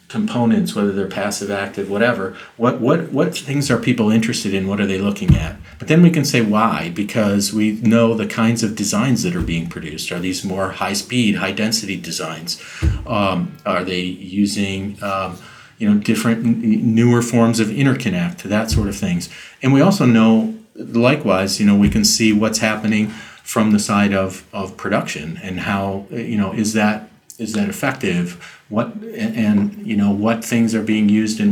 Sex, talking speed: male, 190 wpm